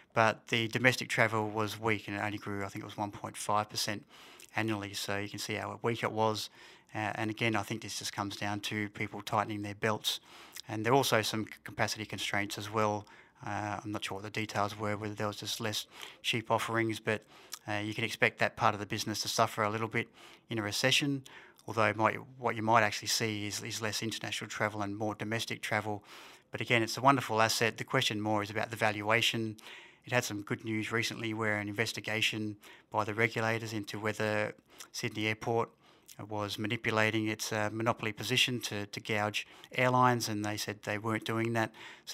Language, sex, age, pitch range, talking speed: English, male, 30-49, 105-115 Hz, 200 wpm